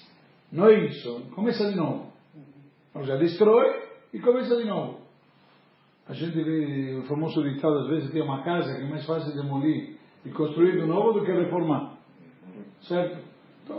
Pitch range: 150-215 Hz